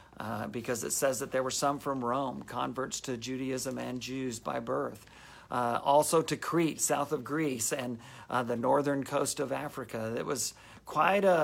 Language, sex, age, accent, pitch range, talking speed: English, male, 50-69, American, 120-150 Hz, 180 wpm